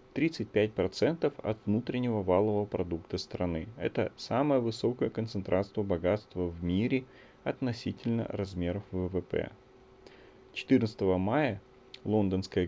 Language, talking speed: Russian, 85 wpm